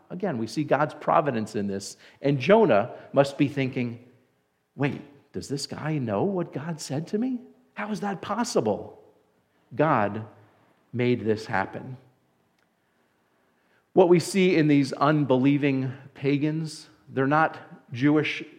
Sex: male